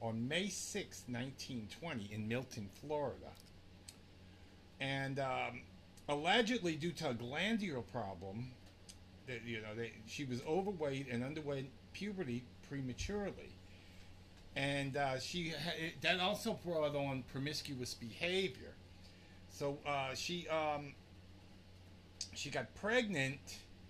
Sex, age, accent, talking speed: male, 50-69, American, 110 wpm